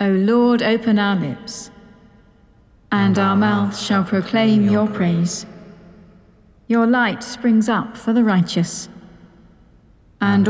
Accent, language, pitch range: British, English, 195-235 Hz